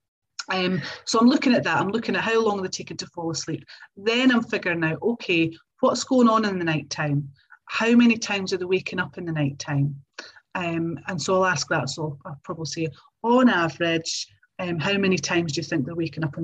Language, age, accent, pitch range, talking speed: English, 30-49, British, 160-220 Hz, 225 wpm